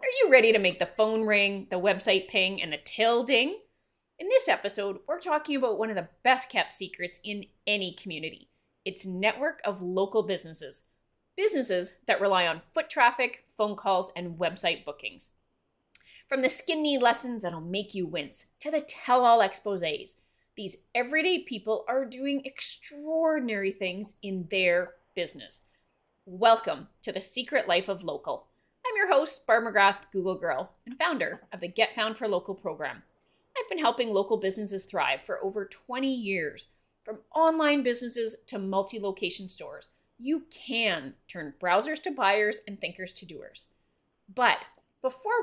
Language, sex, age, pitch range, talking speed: English, female, 30-49, 195-290 Hz, 155 wpm